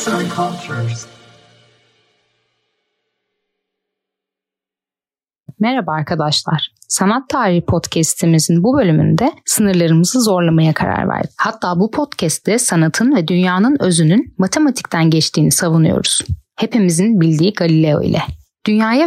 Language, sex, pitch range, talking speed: Turkish, female, 170-230 Hz, 80 wpm